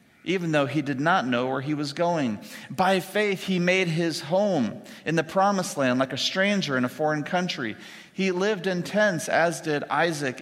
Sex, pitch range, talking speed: male, 130-185 Hz, 195 wpm